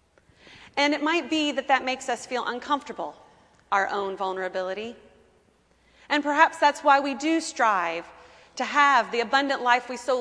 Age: 30-49